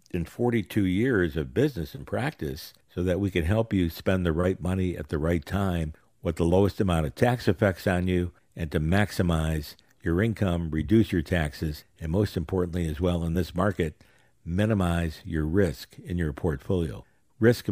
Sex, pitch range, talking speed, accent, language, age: male, 85-110 Hz, 175 wpm, American, English, 60-79